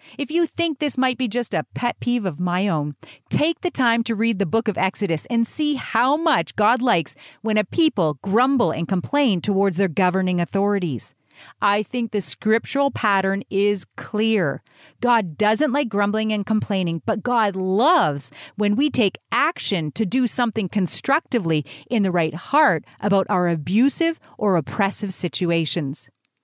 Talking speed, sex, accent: 165 wpm, female, American